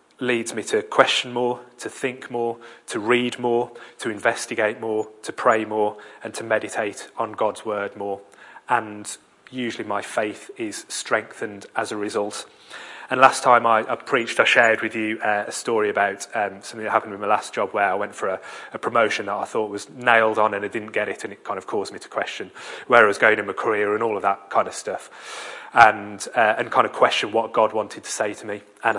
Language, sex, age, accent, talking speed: English, male, 30-49, British, 225 wpm